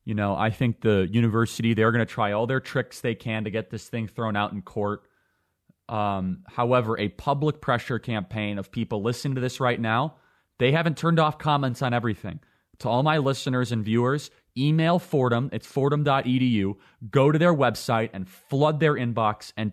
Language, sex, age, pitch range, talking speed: English, male, 30-49, 110-150 Hz, 190 wpm